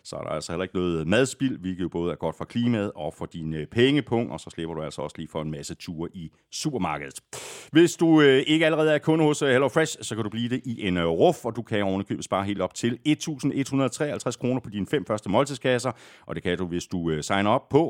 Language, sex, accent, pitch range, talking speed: Danish, male, native, 95-135 Hz, 245 wpm